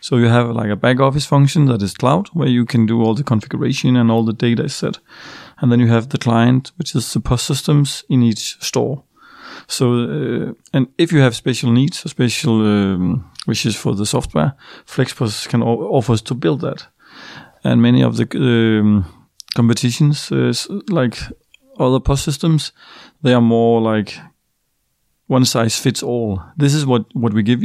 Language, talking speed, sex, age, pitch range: Swedish, 180 wpm, male, 30-49, 115-135 Hz